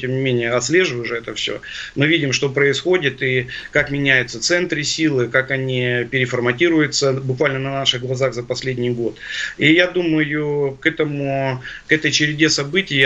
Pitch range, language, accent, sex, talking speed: 125-145 Hz, Russian, native, male, 160 wpm